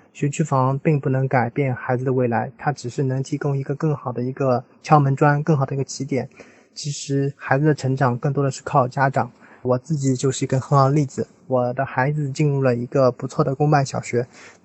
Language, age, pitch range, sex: Chinese, 20-39, 125-145 Hz, male